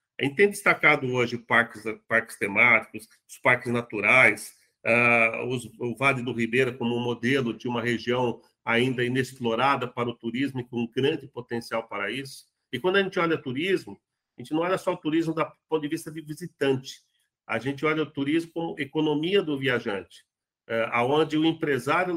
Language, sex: Portuguese, male